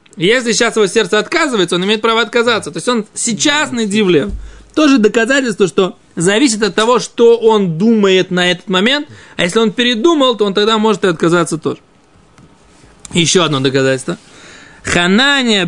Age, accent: 20-39, native